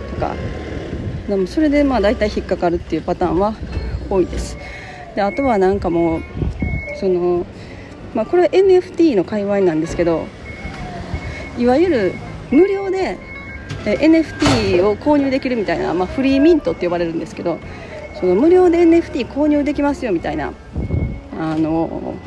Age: 40-59